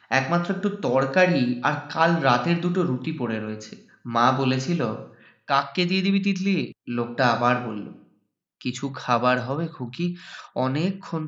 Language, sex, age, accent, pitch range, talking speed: Bengali, male, 30-49, native, 125-185 Hz, 130 wpm